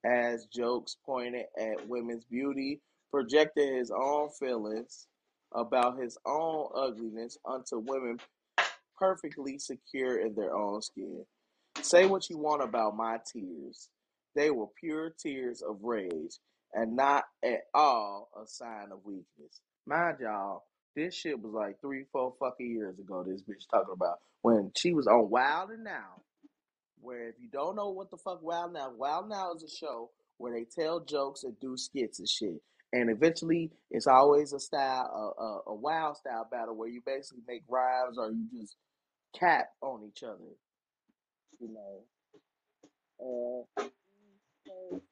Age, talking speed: 20-39, 155 wpm